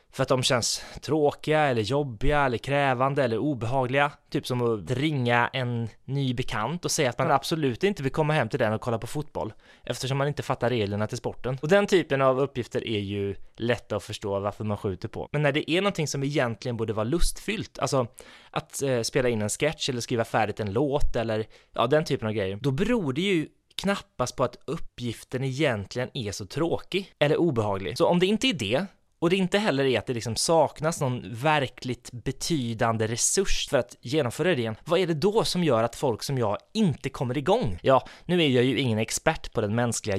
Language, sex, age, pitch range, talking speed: Swedish, male, 20-39, 115-155 Hz, 210 wpm